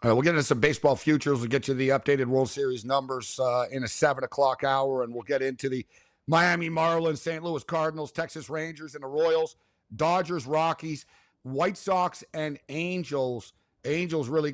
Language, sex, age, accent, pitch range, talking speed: English, male, 50-69, American, 130-160 Hz, 180 wpm